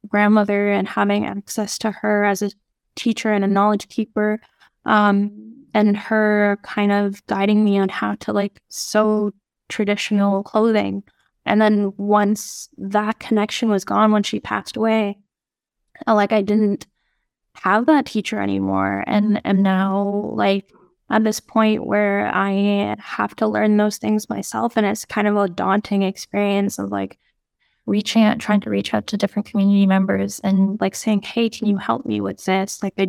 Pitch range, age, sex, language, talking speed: 195-215 Hz, 10-29, female, English, 165 wpm